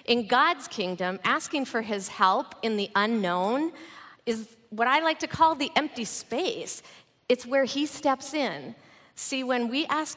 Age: 40-59